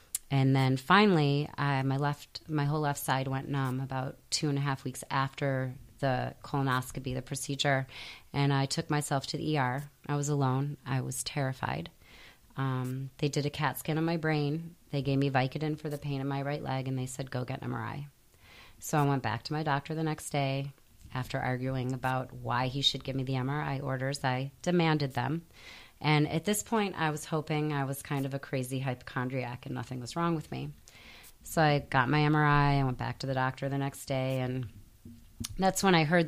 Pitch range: 130-150 Hz